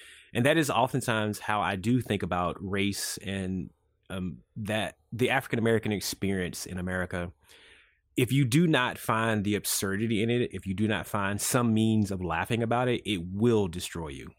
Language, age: English, 30-49